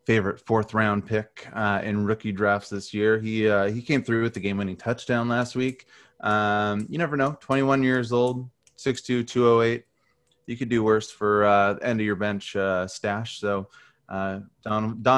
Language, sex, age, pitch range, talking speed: English, male, 30-49, 100-125 Hz, 180 wpm